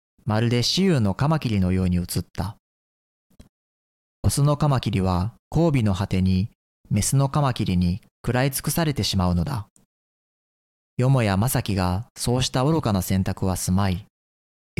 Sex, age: male, 40-59